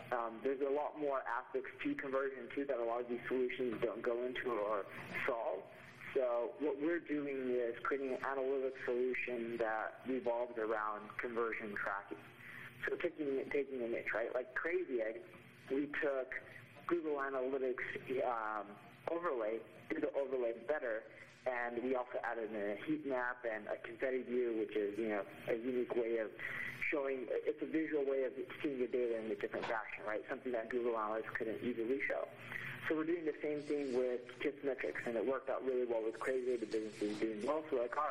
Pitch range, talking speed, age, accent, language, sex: 115-135 Hz, 185 wpm, 40-59, American, English, male